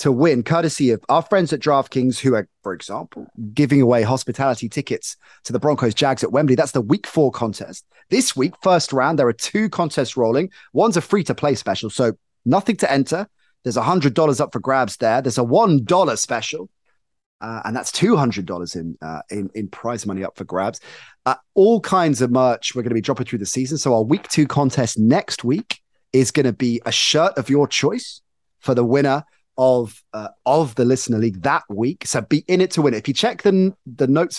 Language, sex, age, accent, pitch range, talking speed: English, male, 30-49, British, 120-155 Hz, 210 wpm